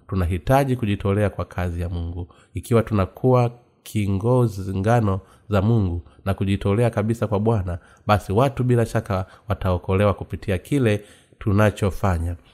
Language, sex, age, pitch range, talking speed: Swahili, male, 30-49, 95-120 Hz, 120 wpm